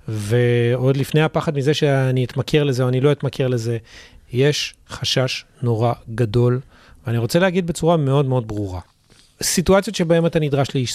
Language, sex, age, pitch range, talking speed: Hebrew, male, 40-59, 120-155 Hz, 150 wpm